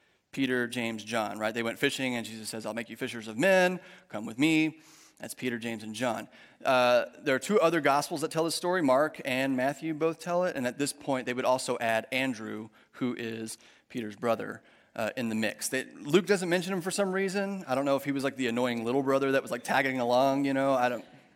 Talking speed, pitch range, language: 240 wpm, 125-180 Hz, English